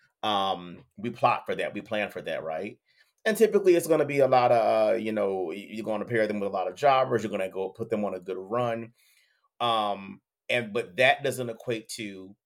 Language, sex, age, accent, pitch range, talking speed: English, male, 30-49, American, 105-145 Hz, 235 wpm